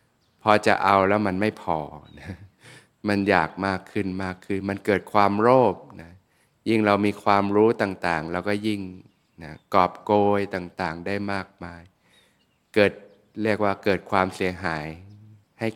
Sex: male